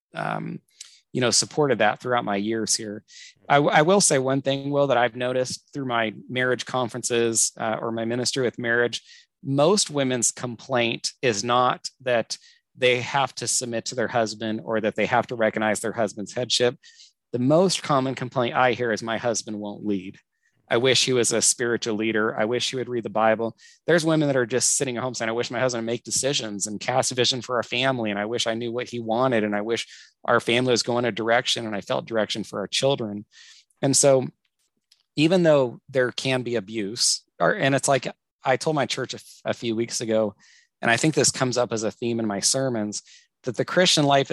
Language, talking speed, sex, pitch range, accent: English, 215 wpm, male, 110-130 Hz, American